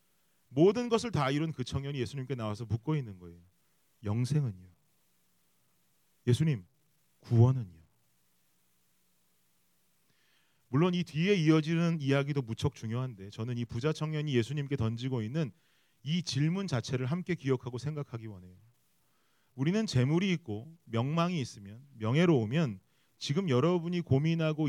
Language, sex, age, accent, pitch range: Korean, male, 30-49, native, 115-160 Hz